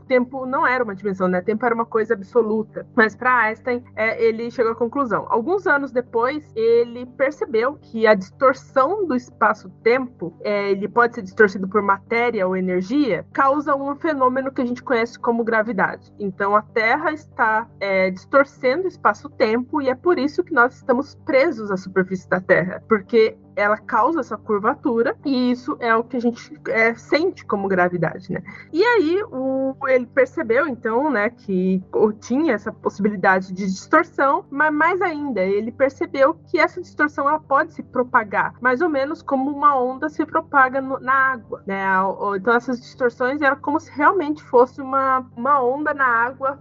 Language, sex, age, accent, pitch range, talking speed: Portuguese, female, 20-39, Brazilian, 220-280 Hz, 170 wpm